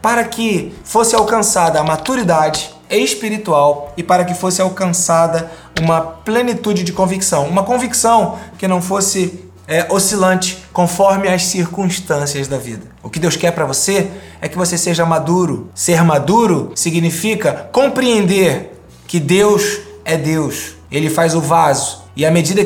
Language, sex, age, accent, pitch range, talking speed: Portuguese, male, 20-39, Brazilian, 150-200 Hz, 140 wpm